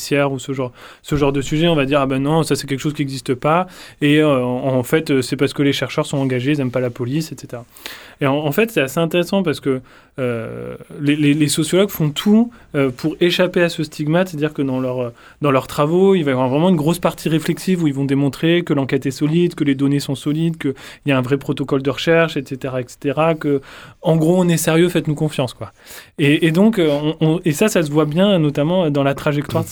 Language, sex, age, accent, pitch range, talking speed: French, male, 20-39, French, 140-165 Hz, 245 wpm